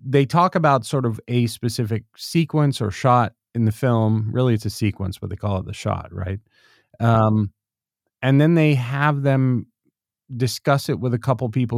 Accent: American